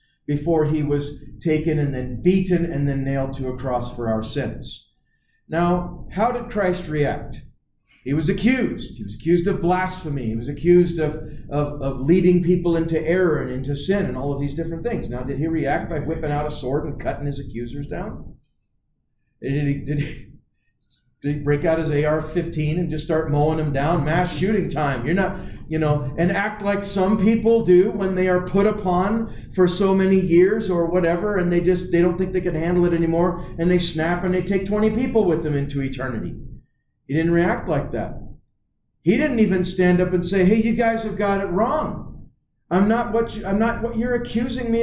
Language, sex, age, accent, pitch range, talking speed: English, male, 40-59, American, 145-215 Hz, 205 wpm